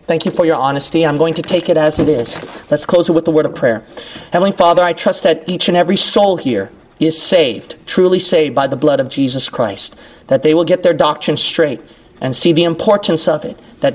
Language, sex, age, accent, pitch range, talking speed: English, male, 40-59, American, 155-215 Hz, 235 wpm